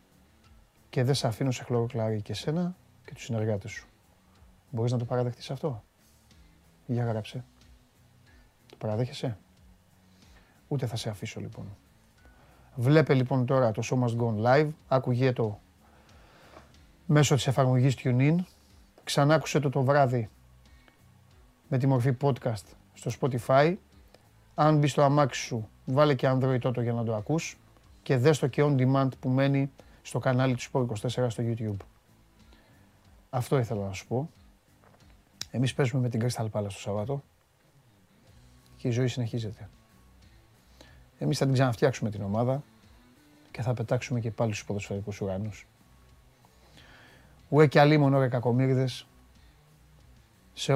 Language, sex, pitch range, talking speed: Greek, male, 100-135 Hz, 135 wpm